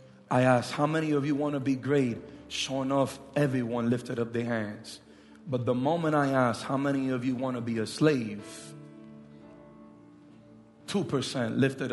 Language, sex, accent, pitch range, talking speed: English, male, American, 115-175 Hz, 165 wpm